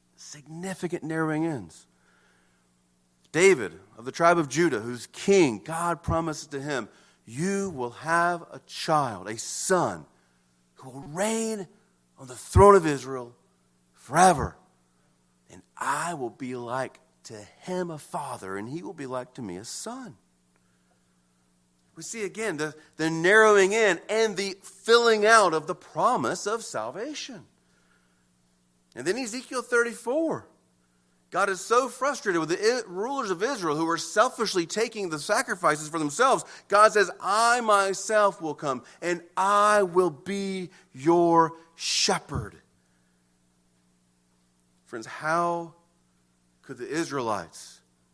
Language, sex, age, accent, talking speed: English, male, 40-59, American, 130 wpm